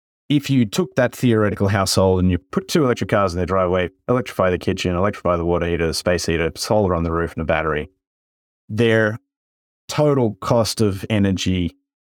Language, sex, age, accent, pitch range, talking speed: English, male, 30-49, Australian, 90-115 Hz, 185 wpm